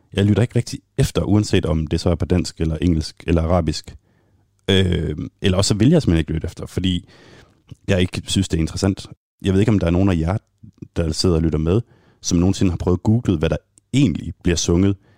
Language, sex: Danish, male